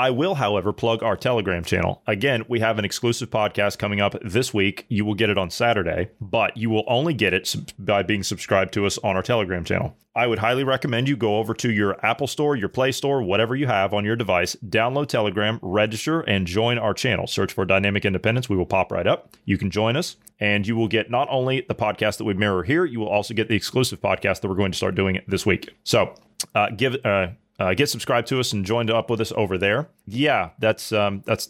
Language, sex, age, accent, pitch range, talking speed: English, male, 30-49, American, 95-115 Hz, 240 wpm